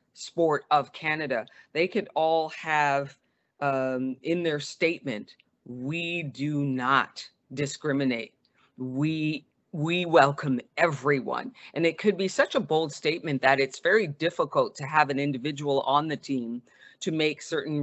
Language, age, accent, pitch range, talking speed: English, 40-59, American, 155-215 Hz, 140 wpm